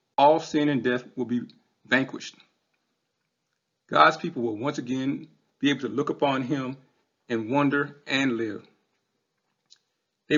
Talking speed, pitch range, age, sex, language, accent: 135 wpm, 120-150 Hz, 40-59, male, English, American